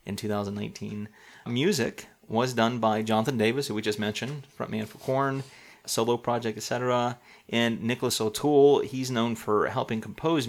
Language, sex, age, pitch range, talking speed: English, male, 30-49, 110-130 Hz, 150 wpm